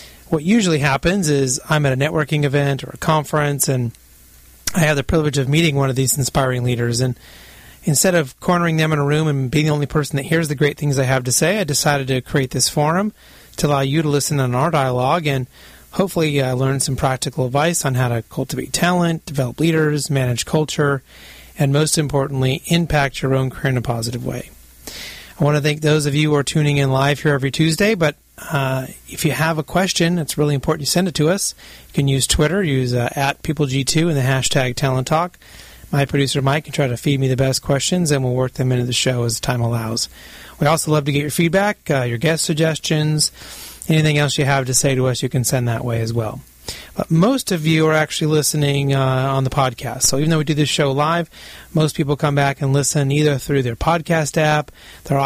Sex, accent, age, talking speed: male, American, 30-49, 225 wpm